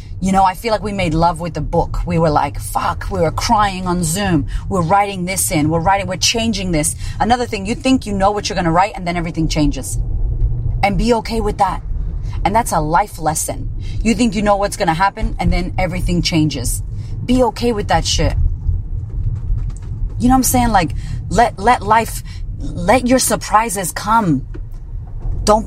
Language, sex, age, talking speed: English, female, 30-49, 200 wpm